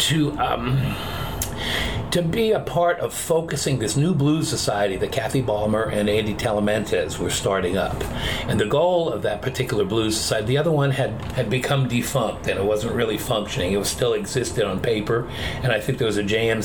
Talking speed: 195 wpm